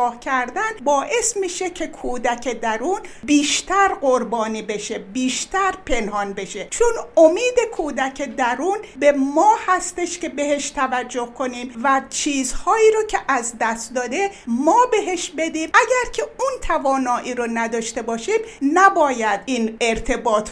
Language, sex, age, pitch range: Persian, female, 60-79, 245-365 Hz